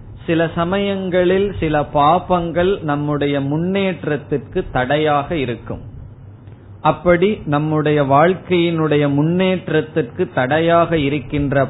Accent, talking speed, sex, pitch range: native, 70 wpm, male, 125-165 Hz